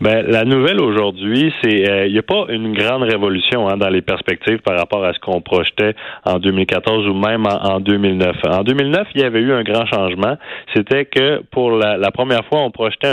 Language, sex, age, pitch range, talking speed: French, male, 30-49, 95-125 Hz, 220 wpm